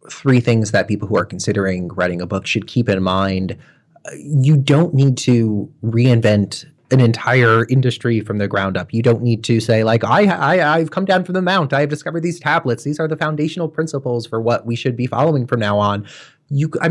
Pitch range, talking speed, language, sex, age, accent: 105-145 Hz, 220 wpm, English, male, 30-49, American